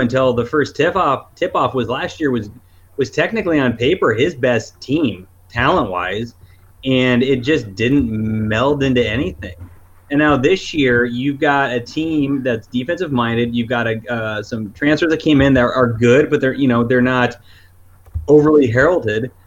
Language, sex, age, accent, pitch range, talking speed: English, male, 30-49, American, 115-145 Hz, 180 wpm